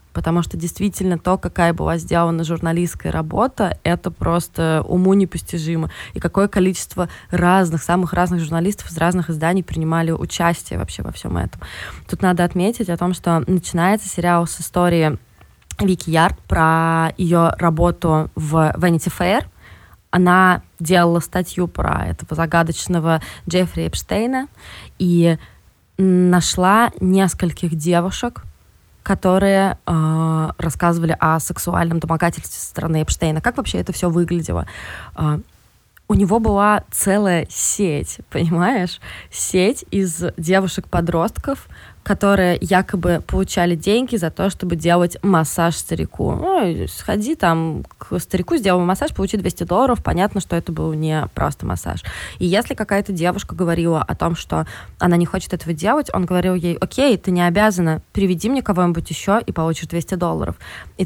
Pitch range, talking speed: 165-190 Hz, 135 wpm